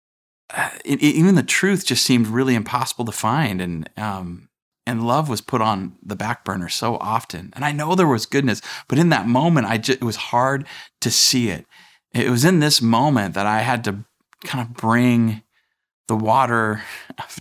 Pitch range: 100-120 Hz